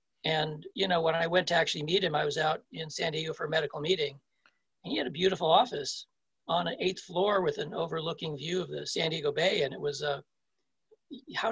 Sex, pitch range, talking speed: male, 165-195 Hz, 230 wpm